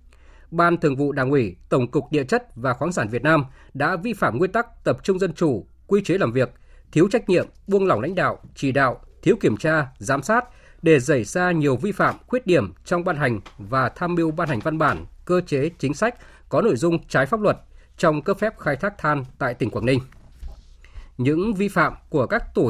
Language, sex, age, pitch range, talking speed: Vietnamese, male, 20-39, 130-175 Hz, 225 wpm